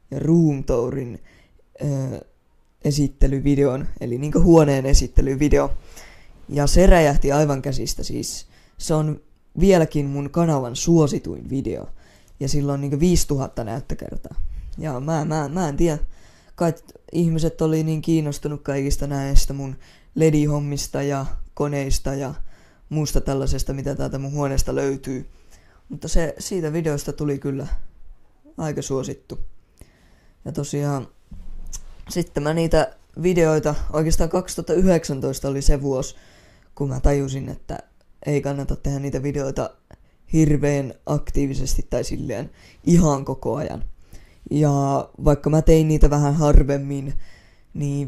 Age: 20-39